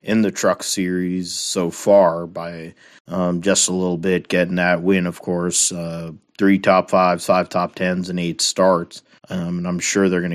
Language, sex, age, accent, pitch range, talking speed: English, male, 30-49, American, 85-95 Hz, 190 wpm